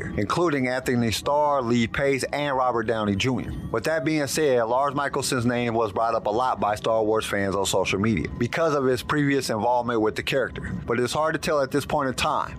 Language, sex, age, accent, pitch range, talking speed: English, male, 50-69, American, 120-155 Hz, 220 wpm